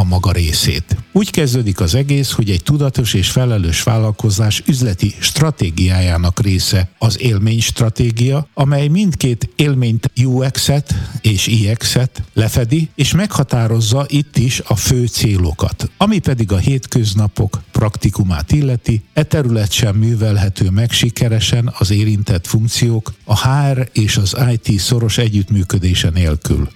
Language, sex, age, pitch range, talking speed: Hungarian, male, 60-79, 100-130 Hz, 125 wpm